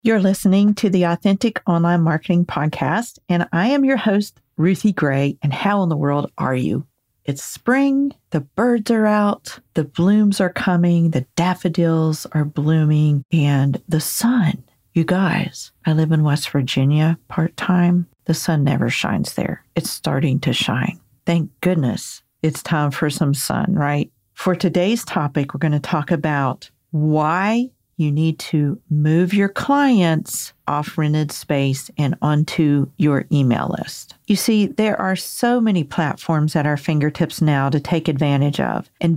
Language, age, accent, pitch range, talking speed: English, 50-69, American, 150-195 Hz, 155 wpm